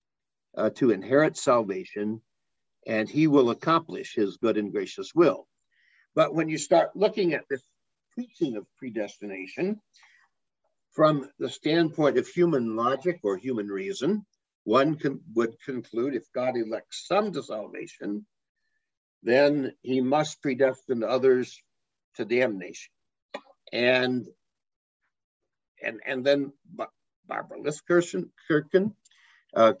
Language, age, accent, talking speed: English, 60-79, American, 115 wpm